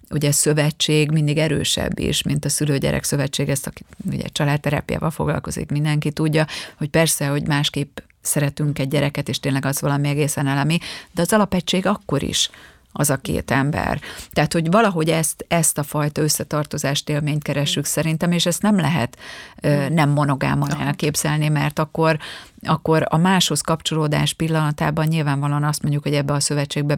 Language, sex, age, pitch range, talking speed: Hungarian, female, 30-49, 140-155 Hz, 155 wpm